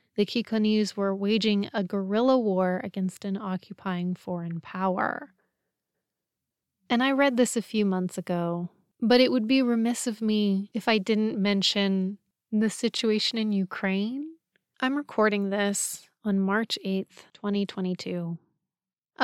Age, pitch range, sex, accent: 30-49, 190-220 Hz, female, American